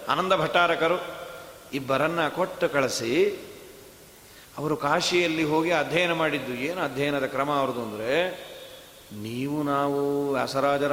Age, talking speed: 40-59, 95 wpm